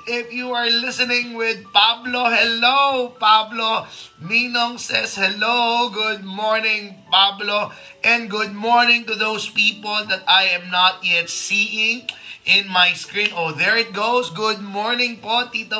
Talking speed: 140 wpm